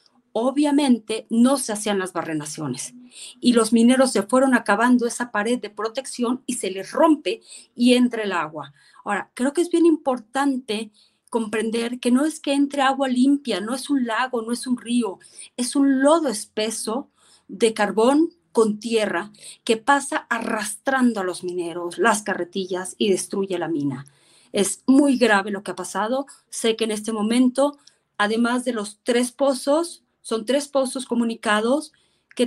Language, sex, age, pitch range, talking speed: Spanish, female, 40-59, 205-250 Hz, 165 wpm